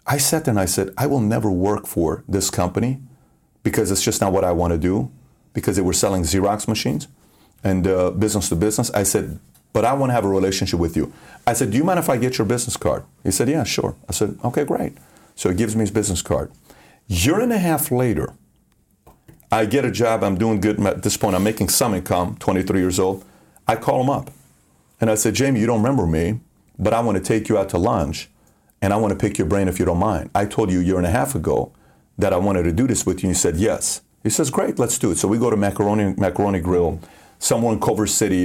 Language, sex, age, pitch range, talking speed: English, male, 40-59, 95-125 Hz, 255 wpm